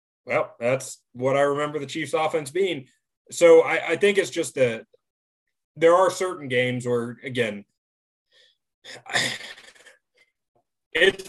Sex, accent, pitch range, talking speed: male, American, 115-150 Hz, 120 wpm